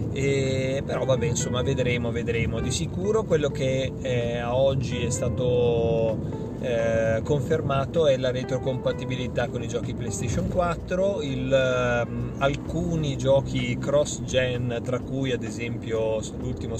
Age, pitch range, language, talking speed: 30-49, 115-135 Hz, Italian, 125 wpm